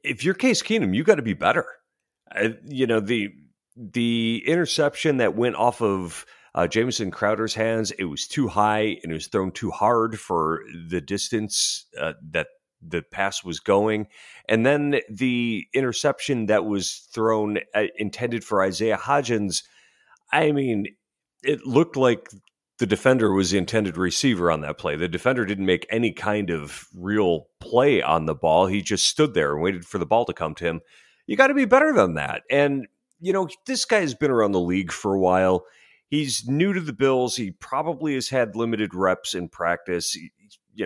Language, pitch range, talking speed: English, 95-145 Hz, 185 wpm